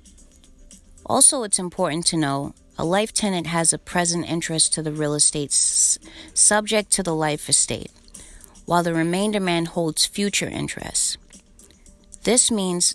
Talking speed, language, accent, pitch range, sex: 140 wpm, English, American, 155-190 Hz, female